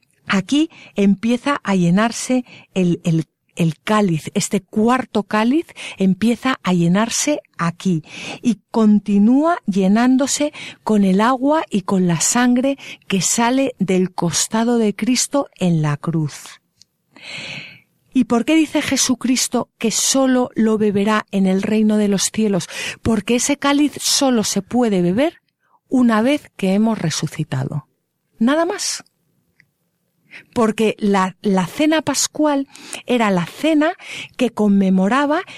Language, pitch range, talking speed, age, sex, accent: Spanish, 185-255 Hz, 125 wpm, 50-69, female, Spanish